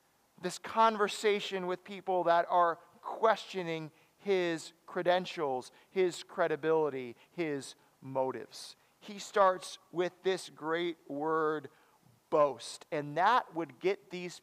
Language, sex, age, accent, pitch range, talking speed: English, male, 40-59, American, 160-220 Hz, 105 wpm